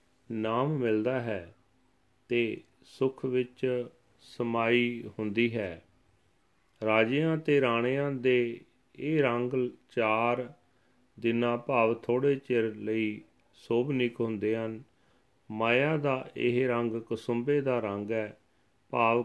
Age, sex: 40-59, male